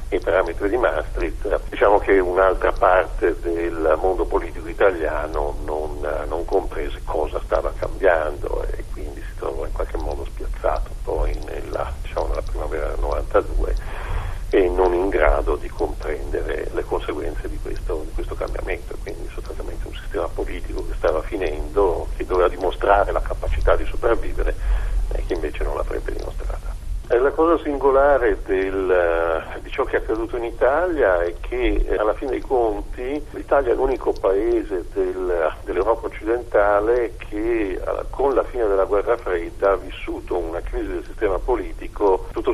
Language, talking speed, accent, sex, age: Italian, 150 wpm, native, male, 50-69